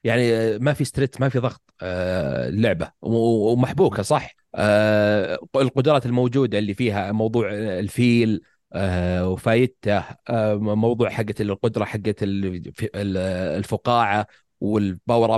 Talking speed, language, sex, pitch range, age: 90 wpm, Arabic, male, 100-130 Hz, 30-49